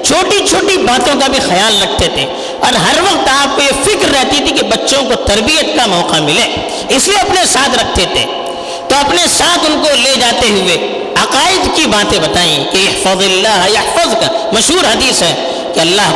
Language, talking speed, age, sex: Urdu, 190 wpm, 50-69, female